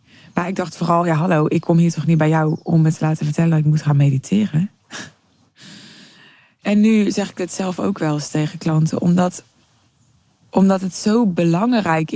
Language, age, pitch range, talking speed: Dutch, 20-39, 150-175 Hz, 190 wpm